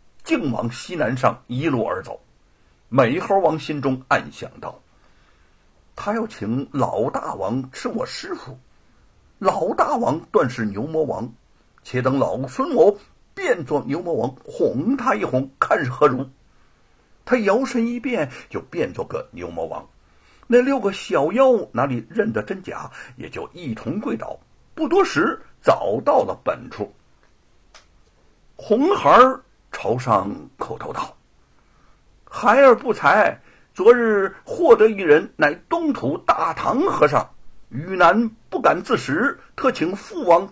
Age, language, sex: 60-79, Chinese, male